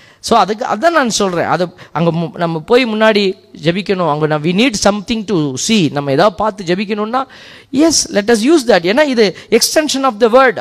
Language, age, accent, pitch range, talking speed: Tamil, 20-39, native, 155-235 Hz, 185 wpm